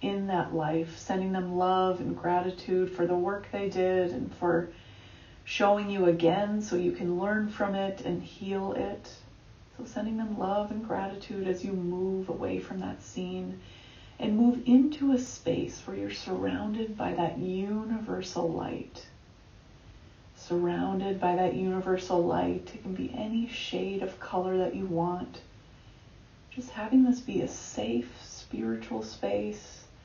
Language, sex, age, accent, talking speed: English, female, 30-49, American, 150 wpm